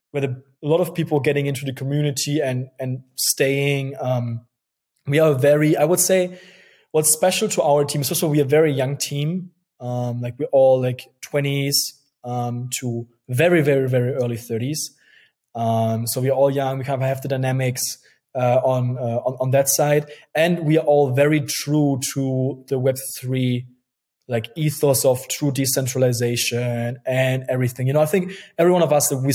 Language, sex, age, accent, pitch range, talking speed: English, male, 20-39, German, 135-150 Hz, 180 wpm